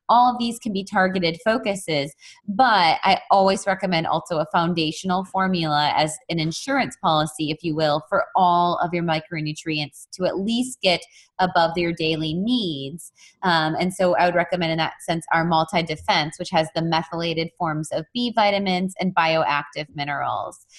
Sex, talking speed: female, 165 wpm